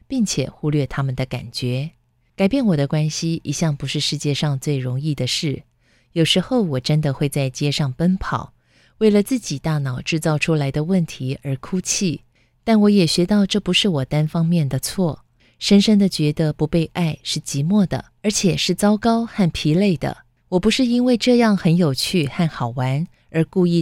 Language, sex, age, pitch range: Chinese, female, 20-39, 145-190 Hz